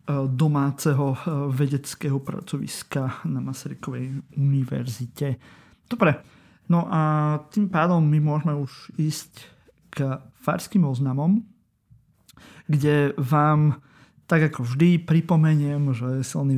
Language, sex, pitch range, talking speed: Slovak, male, 135-165 Hz, 95 wpm